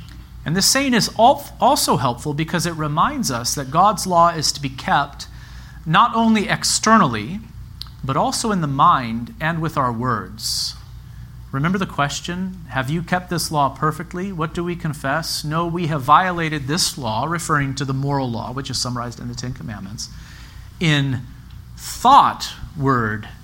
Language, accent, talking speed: English, American, 160 wpm